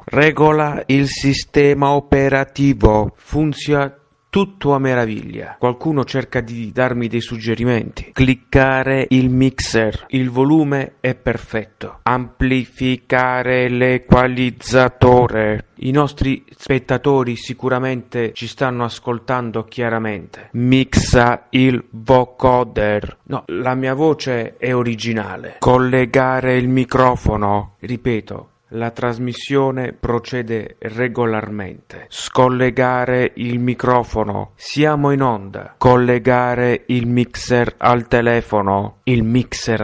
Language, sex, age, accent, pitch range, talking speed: Italian, male, 30-49, native, 115-130 Hz, 90 wpm